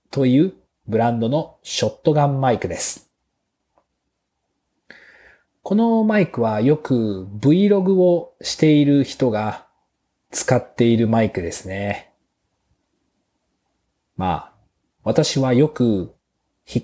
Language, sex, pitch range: Japanese, male, 95-140 Hz